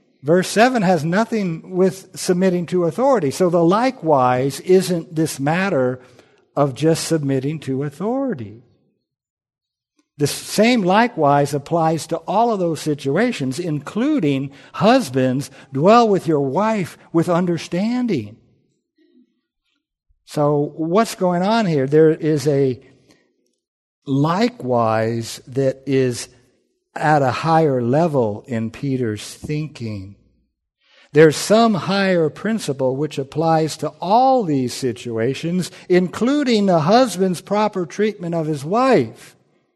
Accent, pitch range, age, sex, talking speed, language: American, 140-200 Hz, 60-79, male, 110 wpm, English